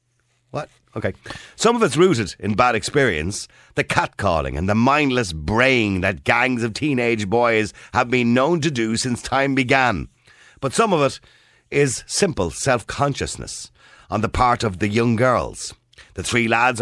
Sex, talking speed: male, 155 wpm